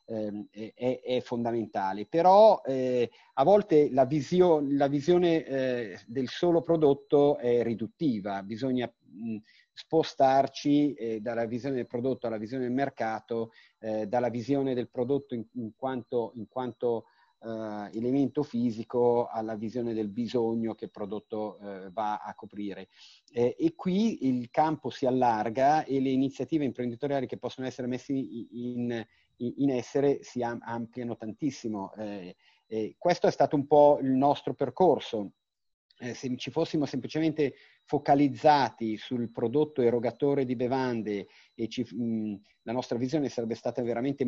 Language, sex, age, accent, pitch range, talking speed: Italian, male, 40-59, native, 110-135 Hz, 135 wpm